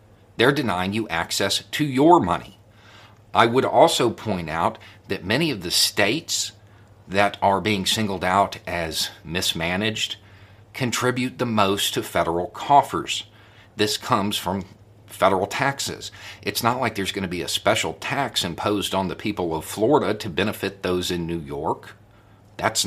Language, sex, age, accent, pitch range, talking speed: English, male, 50-69, American, 100-110 Hz, 150 wpm